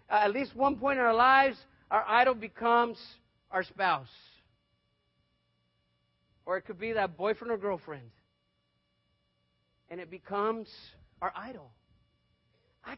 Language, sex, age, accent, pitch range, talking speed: English, male, 40-59, American, 200-280 Hz, 125 wpm